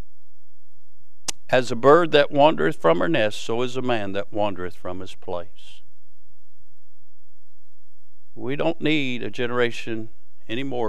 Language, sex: English, male